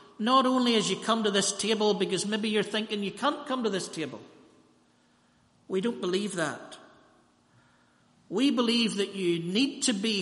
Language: English